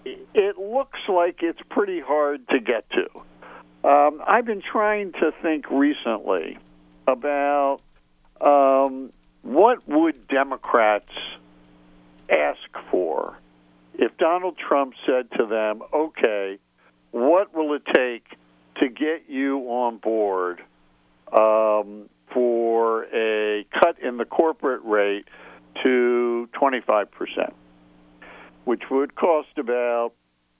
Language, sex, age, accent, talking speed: English, male, 60-79, American, 105 wpm